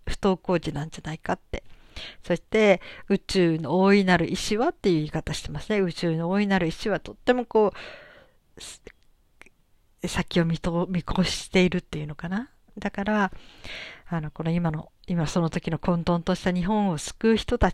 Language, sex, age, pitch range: Japanese, female, 50-69, 165-215 Hz